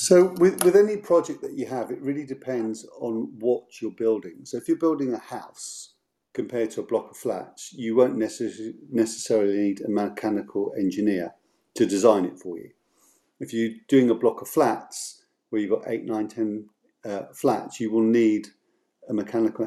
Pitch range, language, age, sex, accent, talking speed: 100-115 Hz, English, 40-59, male, British, 185 wpm